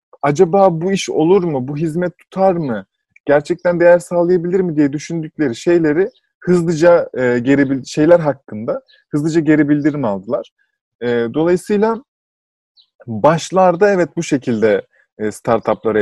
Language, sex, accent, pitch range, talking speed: Turkish, male, native, 115-170 Hz, 125 wpm